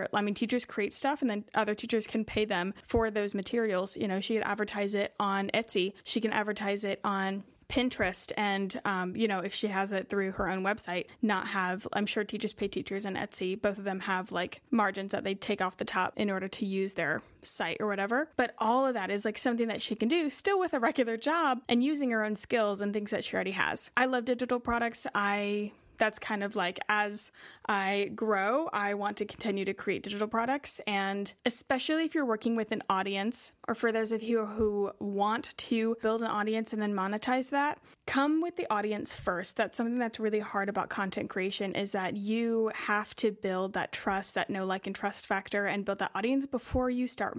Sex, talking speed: female, 220 wpm